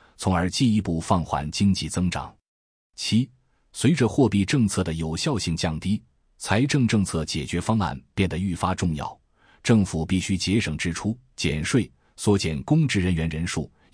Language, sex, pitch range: Chinese, male, 80-110 Hz